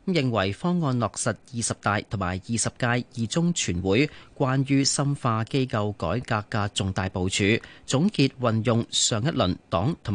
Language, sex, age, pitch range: Chinese, male, 30-49, 105-140 Hz